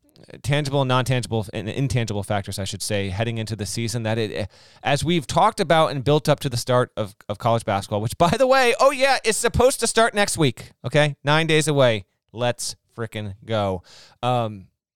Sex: male